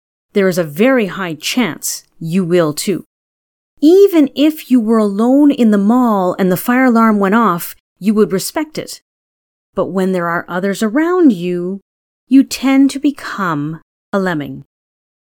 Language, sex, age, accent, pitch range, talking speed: English, female, 30-49, American, 175-255 Hz, 155 wpm